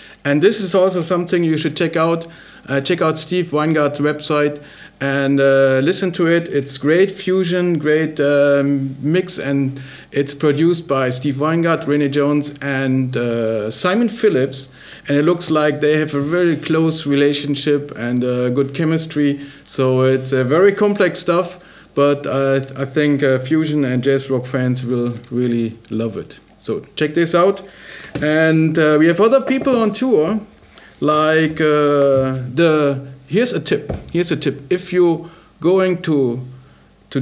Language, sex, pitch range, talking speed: German, male, 140-175 Hz, 160 wpm